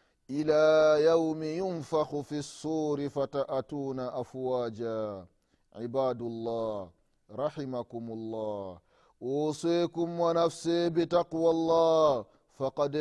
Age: 30-49